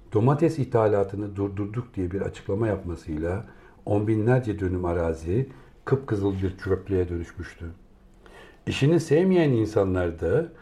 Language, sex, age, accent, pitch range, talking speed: Turkish, male, 60-79, native, 90-115 Hz, 100 wpm